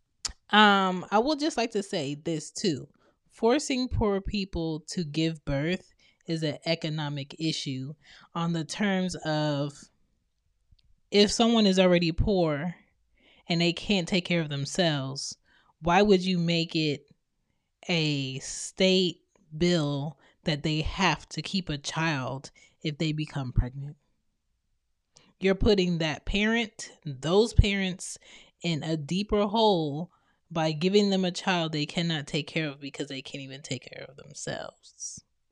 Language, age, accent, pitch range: English, 20-39, American, 150-190 Hz